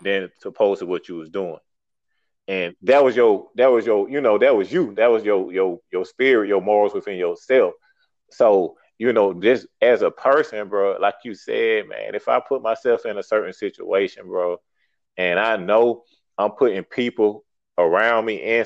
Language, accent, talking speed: English, American, 190 wpm